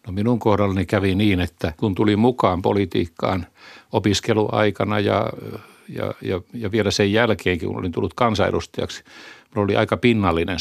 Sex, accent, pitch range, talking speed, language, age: male, native, 95-110 Hz, 130 wpm, Finnish, 60-79